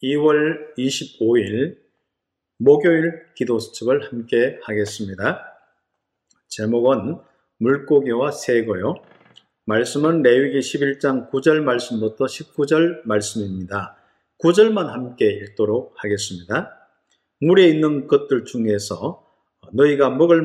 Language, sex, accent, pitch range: Korean, male, native, 115-160 Hz